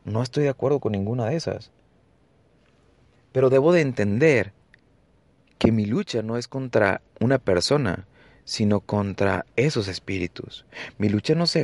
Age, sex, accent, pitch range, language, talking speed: 30-49, male, Mexican, 100-140 Hz, Spanish, 145 wpm